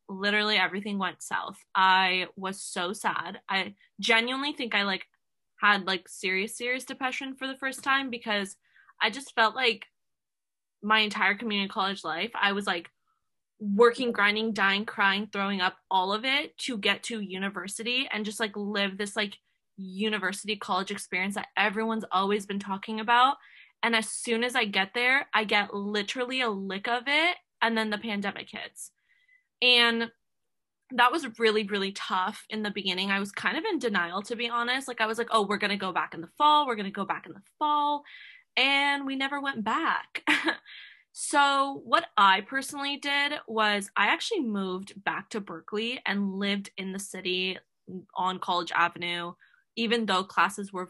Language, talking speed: English, 175 wpm